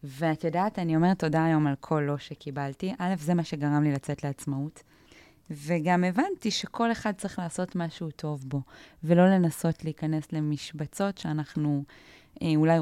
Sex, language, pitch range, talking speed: female, Hebrew, 150-180 Hz, 155 wpm